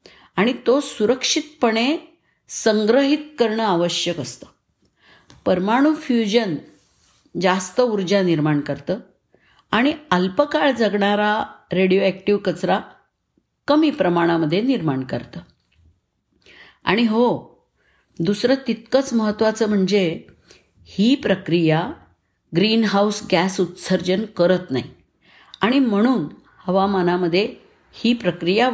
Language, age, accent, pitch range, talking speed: Marathi, 50-69, native, 175-245 Hz, 85 wpm